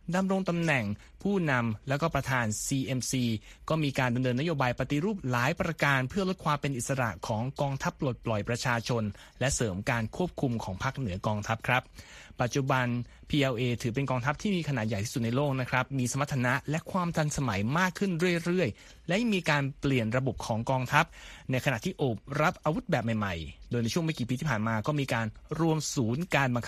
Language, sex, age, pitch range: Thai, male, 20-39, 120-160 Hz